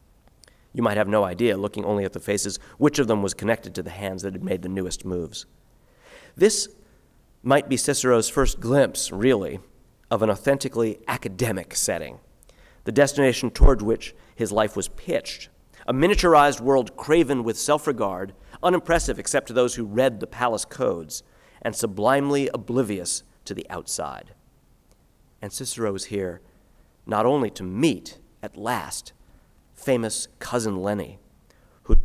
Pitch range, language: 100-135 Hz, English